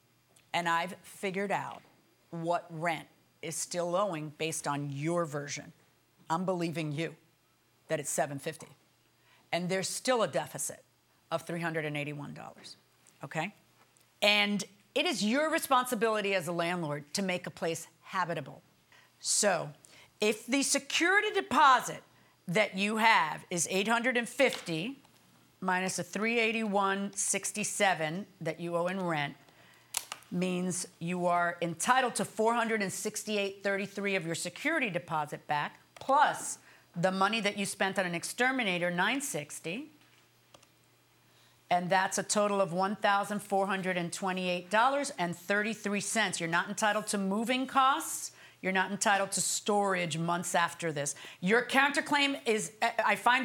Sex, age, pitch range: female, 40-59, 170-220 Hz